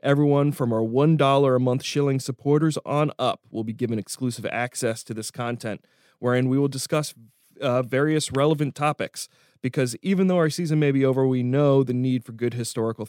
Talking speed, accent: 190 wpm, American